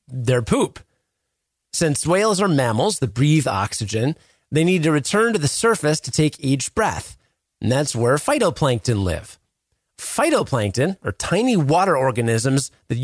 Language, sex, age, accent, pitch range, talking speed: English, male, 30-49, American, 125-200 Hz, 145 wpm